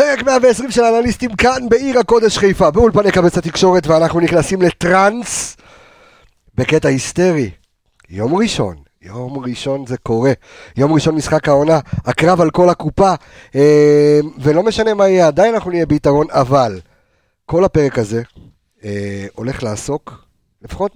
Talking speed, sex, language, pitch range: 135 wpm, male, Hebrew, 115-175 Hz